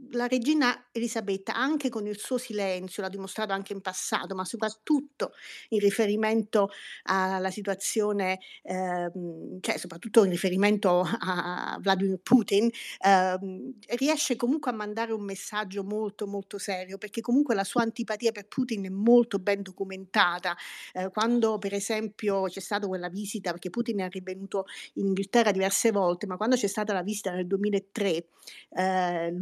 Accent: native